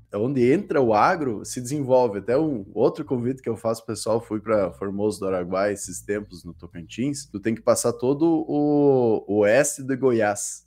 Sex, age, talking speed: male, 20-39, 180 wpm